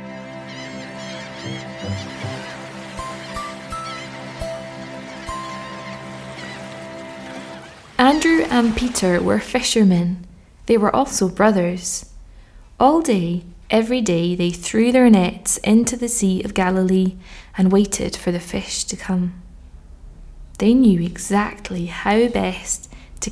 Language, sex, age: English, female, 20-39